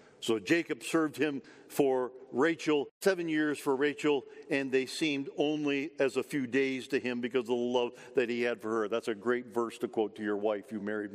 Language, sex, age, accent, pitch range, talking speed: English, male, 50-69, American, 135-195 Hz, 215 wpm